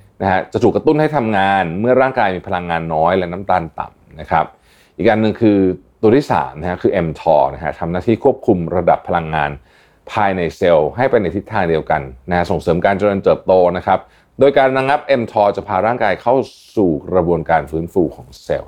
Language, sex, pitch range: Thai, male, 80-115 Hz